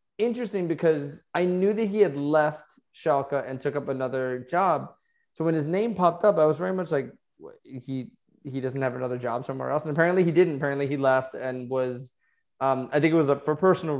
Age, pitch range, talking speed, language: 20-39, 130-165 Hz, 215 wpm, English